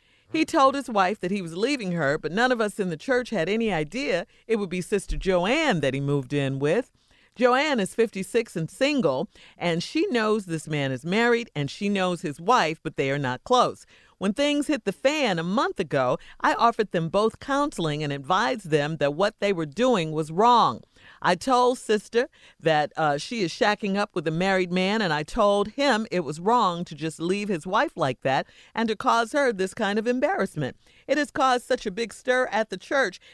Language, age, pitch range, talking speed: English, 40-59, 180-255 Hz, 215 wpm